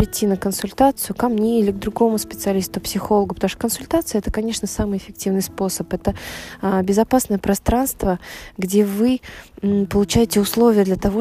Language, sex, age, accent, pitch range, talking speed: Russian, female, 20-39, native, 190-215 Hz, 155 wpm